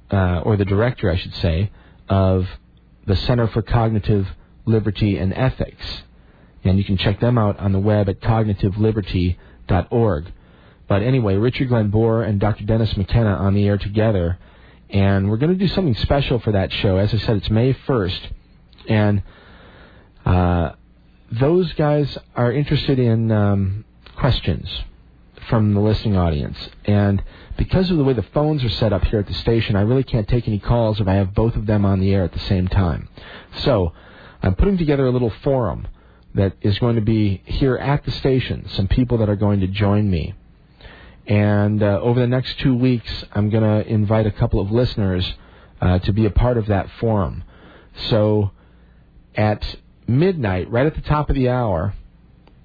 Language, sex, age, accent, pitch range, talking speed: English, male, 40-59, American, 95-115 Hz, 180 wpm